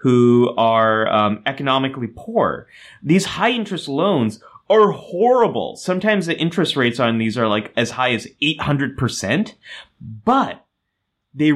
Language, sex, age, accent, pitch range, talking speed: English, male, 30-49, American, 110-150 Hz, 135 wpm